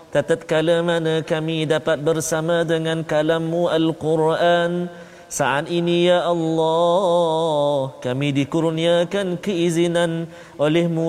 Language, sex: Malayalam, male